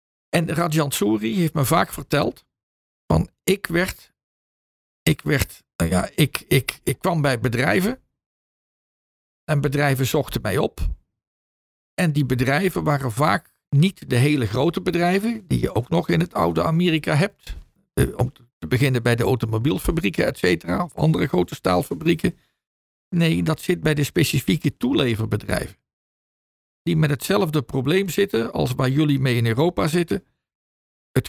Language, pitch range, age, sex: Dutch, 115-160 Hz, 50-69, male